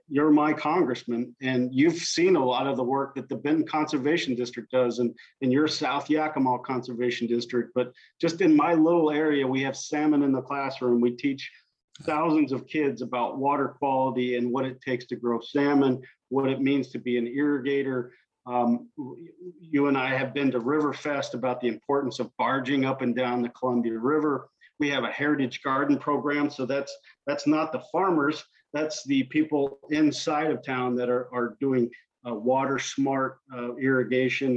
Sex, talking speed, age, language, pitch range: male, 185 wpm, 50-69, English, 125-150 Hz